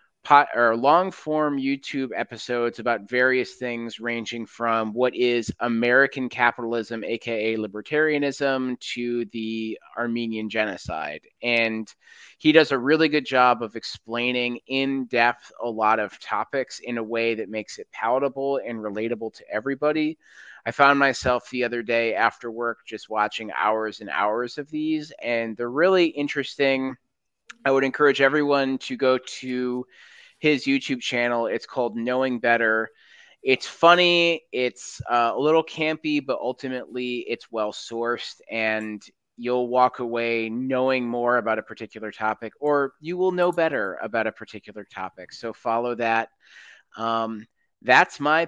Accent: American